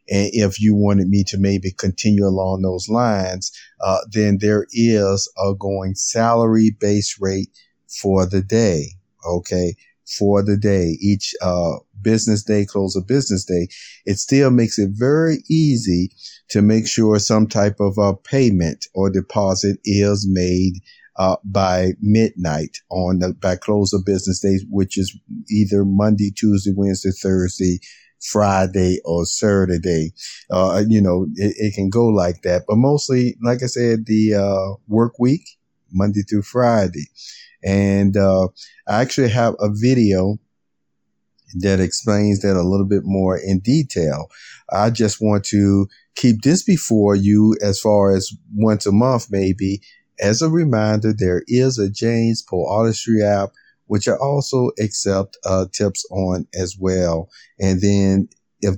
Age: 50-69